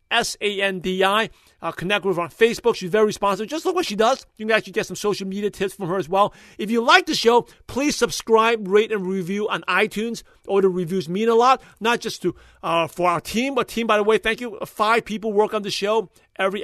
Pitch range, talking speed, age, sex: 185-225 Hz, 240 wpm, 40-59, male